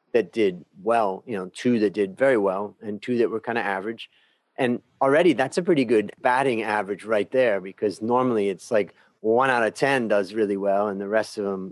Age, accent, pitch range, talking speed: 40-59, American, 100-120 Hz, 220 wpm